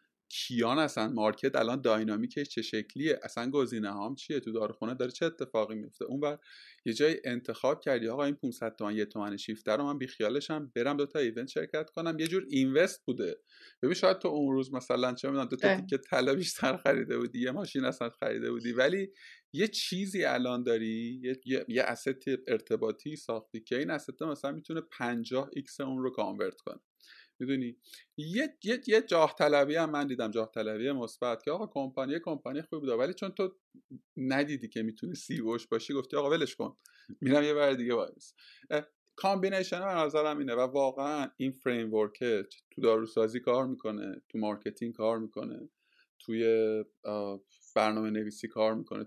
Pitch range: 115-160 Hz